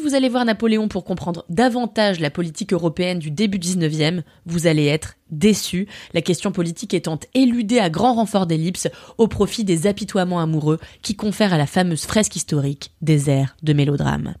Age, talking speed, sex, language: 20-39, 180 wpm, female, French